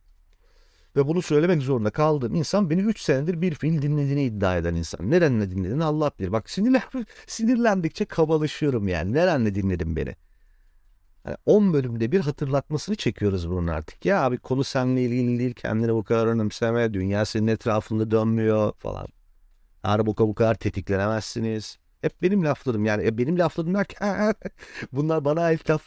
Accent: native